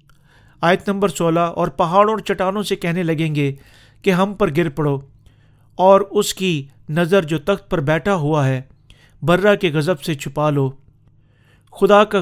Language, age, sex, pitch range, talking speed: Urdu, 50-69, male, 140-190 Hz, 165 wpm